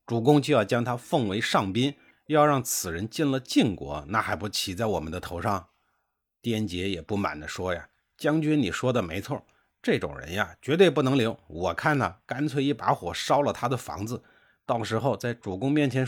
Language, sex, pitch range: Chinese, male, 95-130 Hz